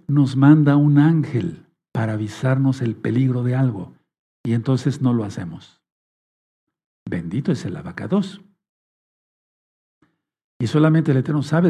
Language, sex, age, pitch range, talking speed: Spanish, male, 50-69, 125-165 Hz, 125 wpm